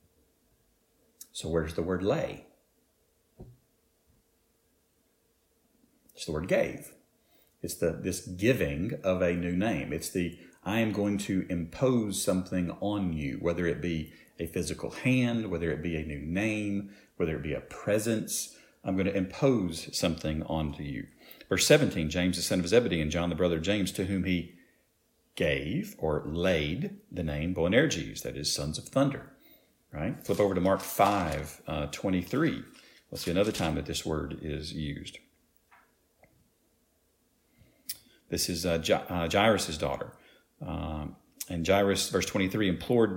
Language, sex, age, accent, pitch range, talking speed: English, male, 50-69, American, 80-100 Hz, 150 wpm